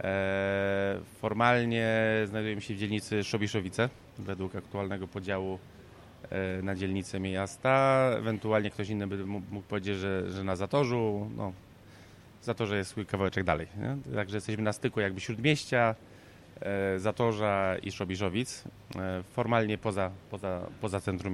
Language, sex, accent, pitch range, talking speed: Polish, male, native, 95-110 Hz, 120 wpm